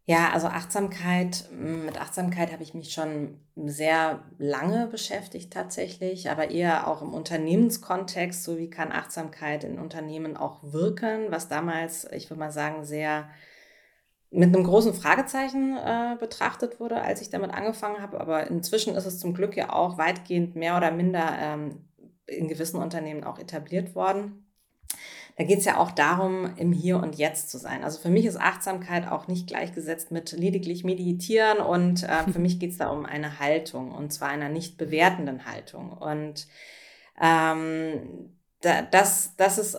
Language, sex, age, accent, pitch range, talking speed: German, female, 20-39, German, 155-185 Hz, 160 wpm